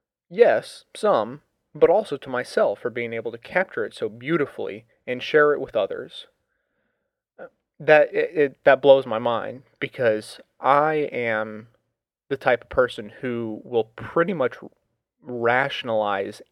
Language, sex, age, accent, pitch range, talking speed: English, male, 30-49, American, 115-185 Hz, 140 wpm